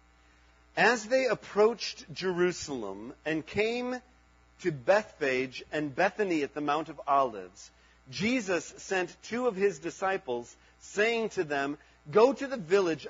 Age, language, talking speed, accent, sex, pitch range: 40-59, English, 130 wpm, American, male, 135-220 Hz